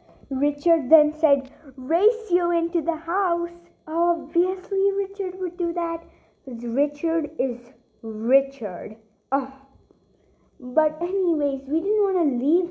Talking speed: 120 wpm